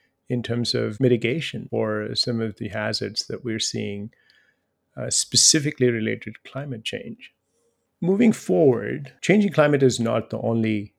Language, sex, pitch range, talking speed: English, male, 105-125 Hz, 140 wpm